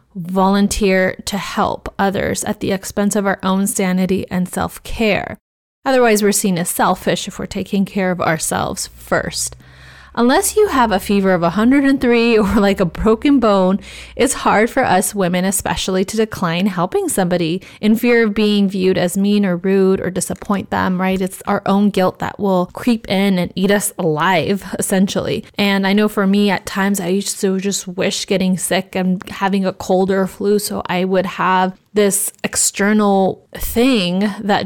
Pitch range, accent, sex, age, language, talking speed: 185-205 Hz, American, female, 20-39, English, 175 wpm